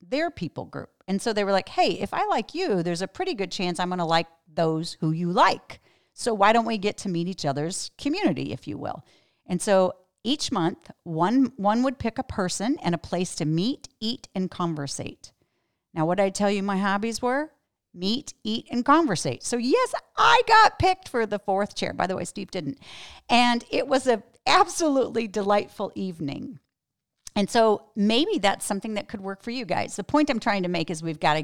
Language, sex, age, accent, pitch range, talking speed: English, female, 40-59, American, 175-245 Hz, 215 wpm